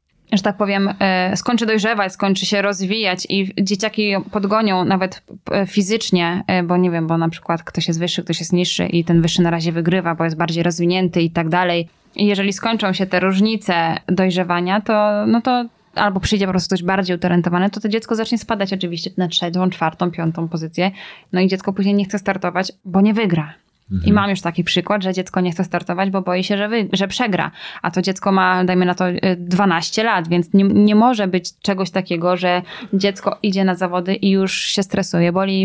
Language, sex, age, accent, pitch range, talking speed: Polish, female, 10-29, native, 180-210 Hz, 200 wpm